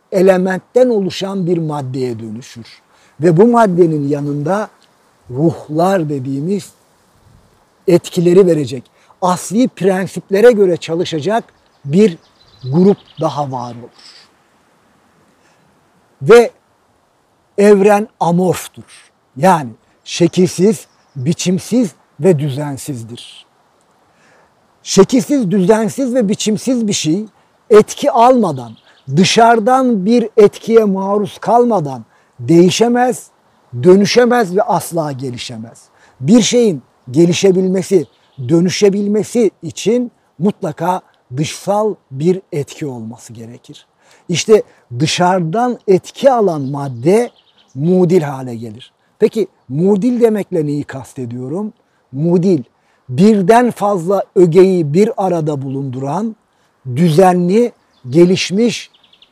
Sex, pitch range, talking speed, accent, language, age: male, 145-210 Hz, 80 wpm, native, Turkish, 50-69